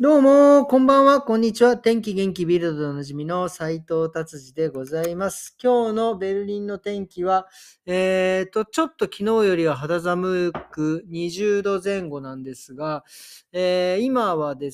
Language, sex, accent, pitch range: Japanese, male, native, 145-195 Hz